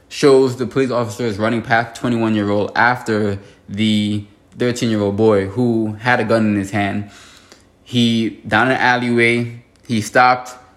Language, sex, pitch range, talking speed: English, male, 100-115 Hz, 135 wpm